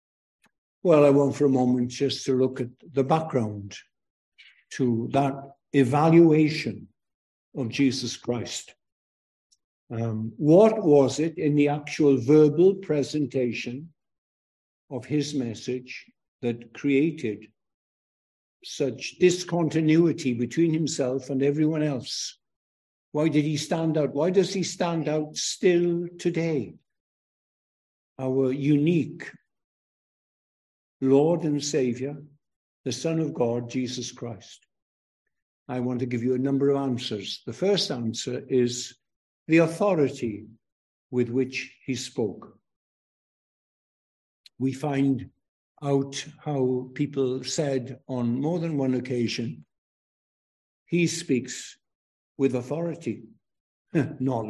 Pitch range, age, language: 120-150 Hz, 60-79, English